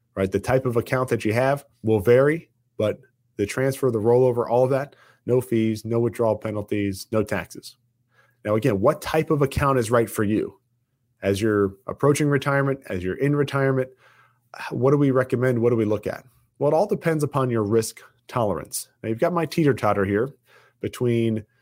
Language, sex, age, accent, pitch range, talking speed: English, male, 30-49, American, 115-140 Hz, 185 wpm